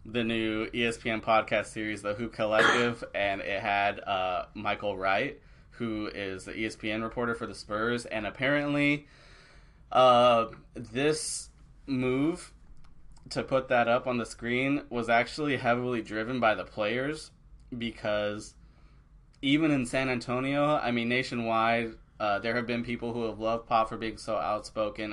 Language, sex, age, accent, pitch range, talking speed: English, male, 20-39, American, 105-125 Hz, 150 wpm